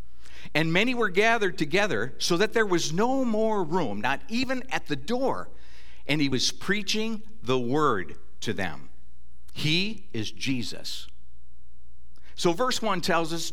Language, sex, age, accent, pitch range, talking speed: English, male, 50-69, American, 110-160 Hz, 145 wpm